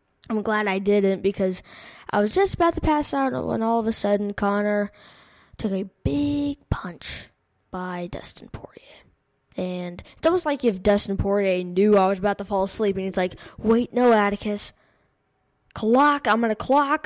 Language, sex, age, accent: English, female, 10-29, American